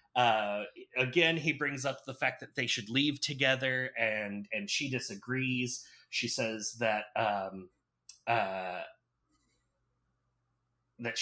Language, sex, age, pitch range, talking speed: English, male, 30-49, 125-155 Hz, 120 wpm